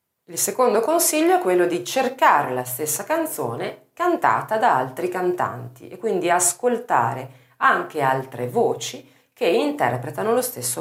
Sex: female